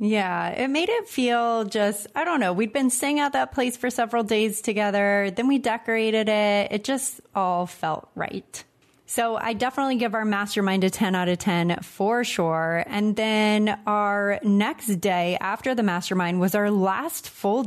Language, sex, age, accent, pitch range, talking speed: English, female, 30-49, American, 185-225 Hz, 180 wpm